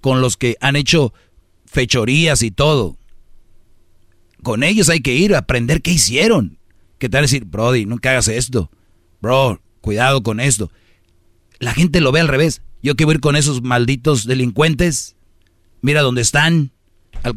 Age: 40-59